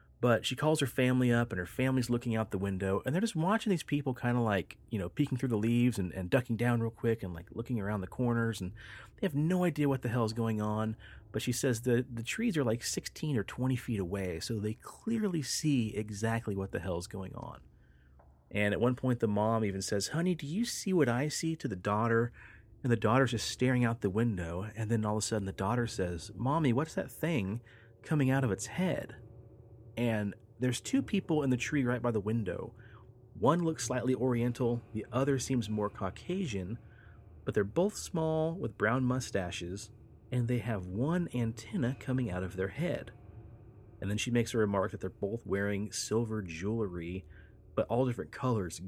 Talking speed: 210 wpm